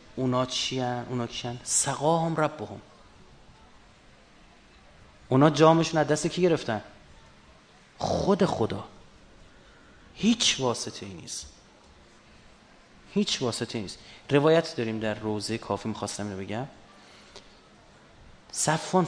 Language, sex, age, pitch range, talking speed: Persian, male, 30-49, 110-155 Hz, 100 wpm